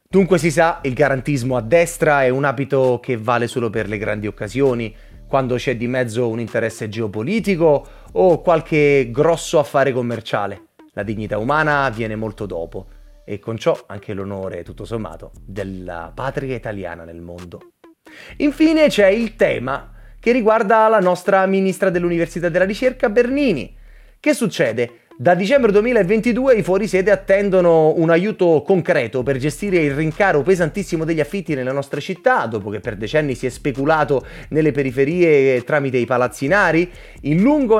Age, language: 30-49, Italian